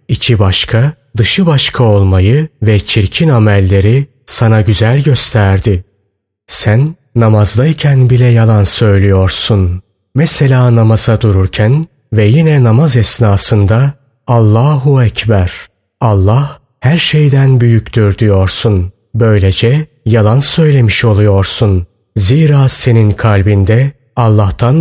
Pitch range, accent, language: 100-130 Hz, native, Turkish